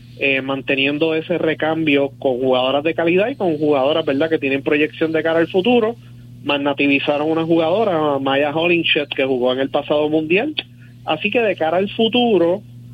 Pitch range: 130-165 Hz